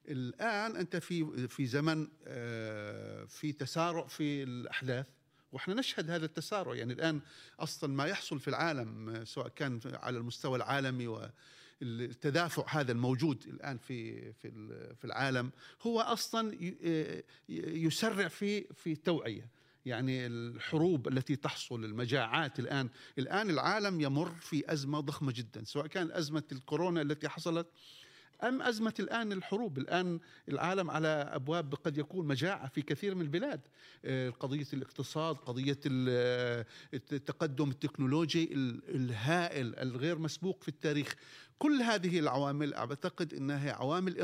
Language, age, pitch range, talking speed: Arabic, 50-69, 130-165 Hz, 120 wpm